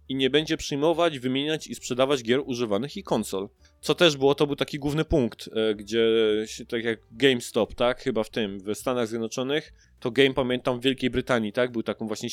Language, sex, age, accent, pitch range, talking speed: Polish, male, 20-39, native, 110-150 Hz, 200 wpm